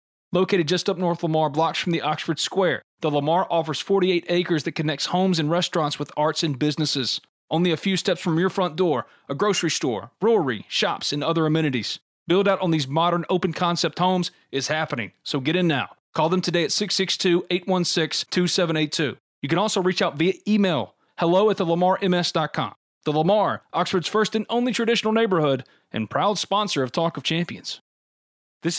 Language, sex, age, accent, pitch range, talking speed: English, male, 30-49, American, 145-185 Hz, 175 wpm